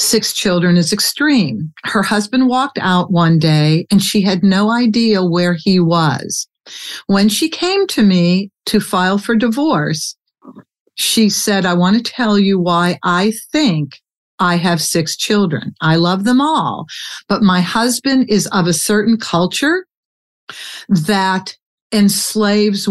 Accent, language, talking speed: American, English, 145 wpm